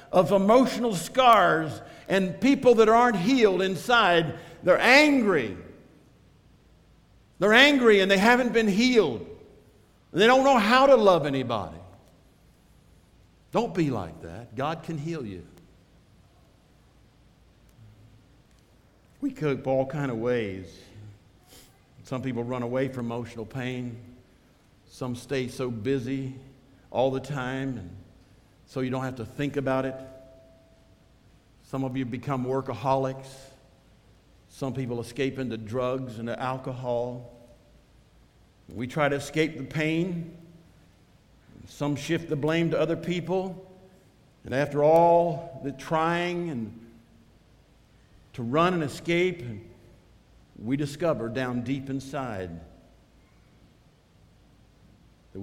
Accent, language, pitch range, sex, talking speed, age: American, English, 115-165 Hz, male, 110 wpm, 60-79